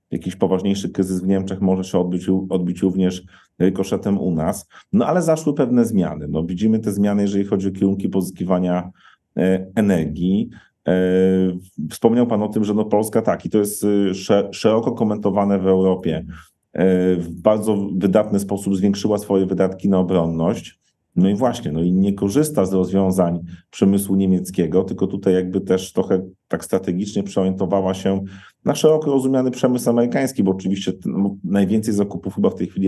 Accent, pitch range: native, 95-105 Hz